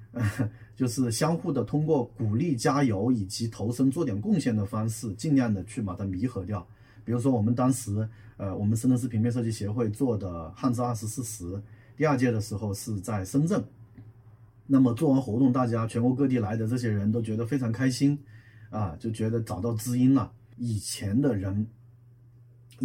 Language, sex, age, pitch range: Chinese, male, 30-49, 115-140 Hz